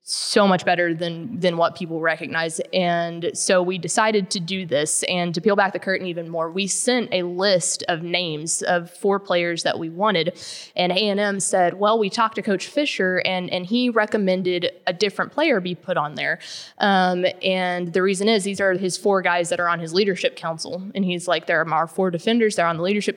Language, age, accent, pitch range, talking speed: English, 20-39, American, 175-215 Hz, 215 wpm